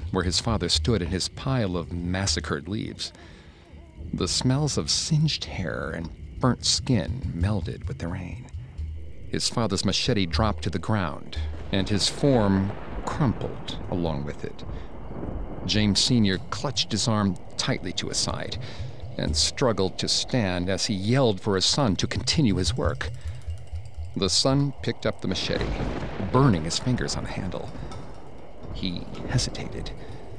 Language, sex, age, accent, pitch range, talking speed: English, male, 50-69, American, 85-110 Hz, 145 wpm